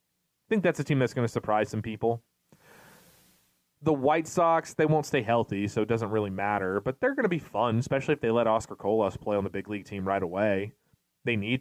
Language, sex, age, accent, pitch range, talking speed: English, male, 30-49, American, 105-135 Hz, 235 wpm